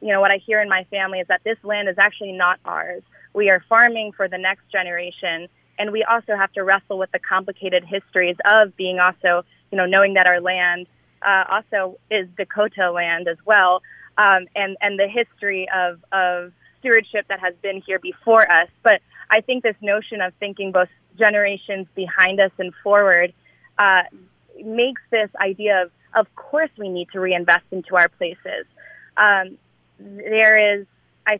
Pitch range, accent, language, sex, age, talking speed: 180-210 Hz, American, English, female, 20-39, 180 wpm